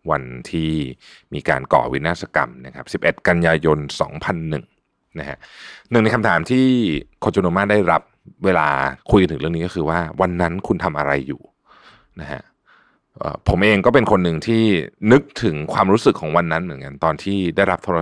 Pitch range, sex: 75-95 Hz, male